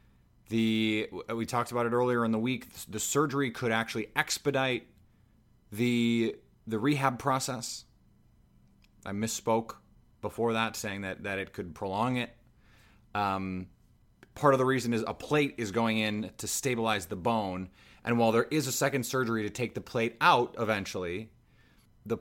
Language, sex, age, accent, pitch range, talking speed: English, male, 30-49, American, 105-125 Hz, 155 wpm